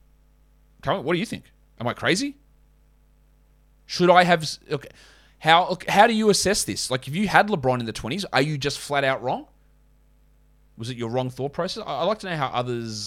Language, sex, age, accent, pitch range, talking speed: English, male, 30-49, Australian, 130-180 Hz, 195 wpm